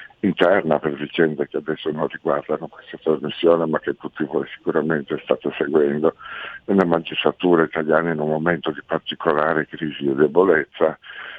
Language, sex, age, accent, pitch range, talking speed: Italian, male, 60-79, native, 80-95 Hz, 150 wpm